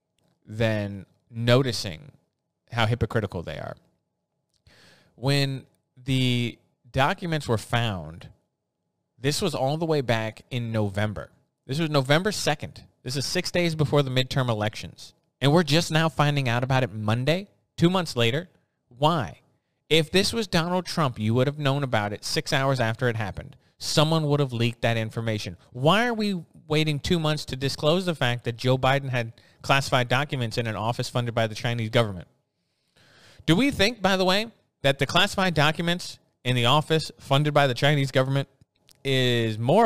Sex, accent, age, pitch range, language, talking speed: male, American, 20-39, 115-150 Hz, English, 165 wpm